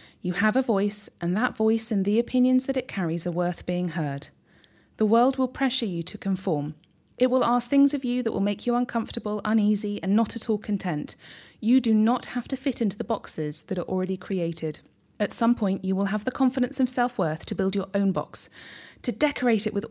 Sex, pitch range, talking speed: female, 180-240 Hz, 220 wpm